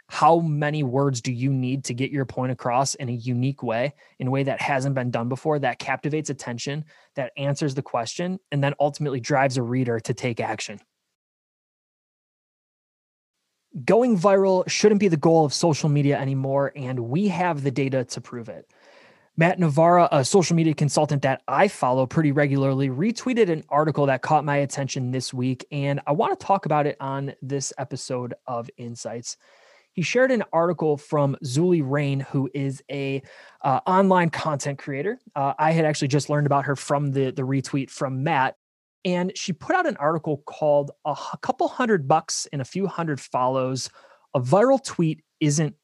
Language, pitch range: English, 130-160 Hz